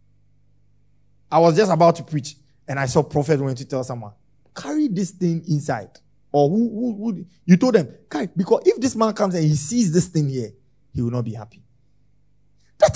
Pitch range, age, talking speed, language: 120-155 Hz, 30-49, 200 wpm, English